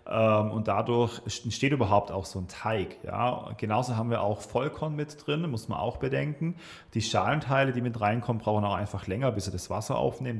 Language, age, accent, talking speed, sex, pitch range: German, 40-59, German, 195 wpm, male, 100-125 Hz